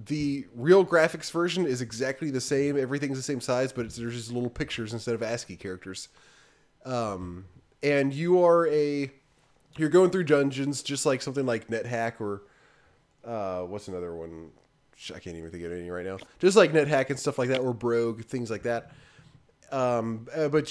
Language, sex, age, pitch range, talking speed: English, male, 20-39, 120-155 Hz, 180 wpm